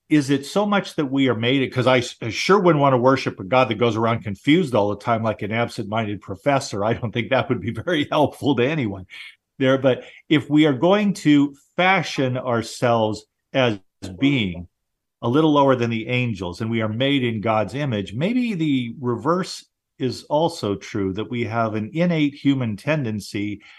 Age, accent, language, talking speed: 50-69, American, English, 190 wpm